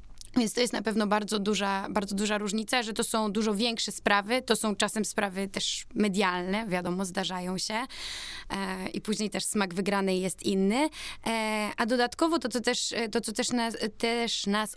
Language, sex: Polish, female